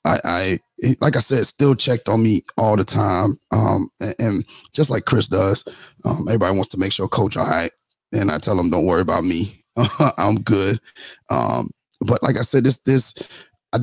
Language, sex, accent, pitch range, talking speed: English, male, American, 115-135 Hz, 200 wpm